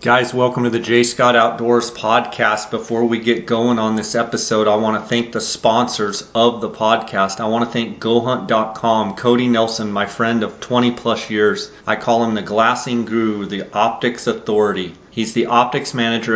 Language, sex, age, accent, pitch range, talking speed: English, male, 30-49, American, 110-120 Hz, 185 wpm